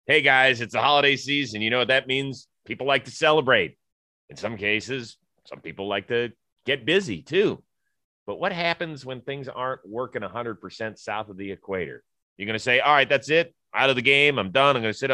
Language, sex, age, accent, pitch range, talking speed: English, male, 30-49, American, 110-150 Hz, 220 wpm